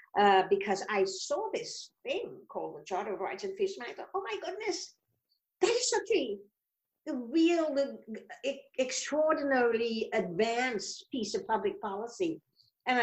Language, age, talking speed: English, 50-69, 160 wpm